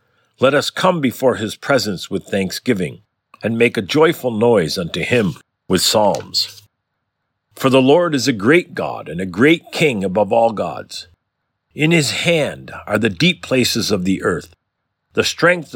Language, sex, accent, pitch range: English, male, American, 110-145 Hz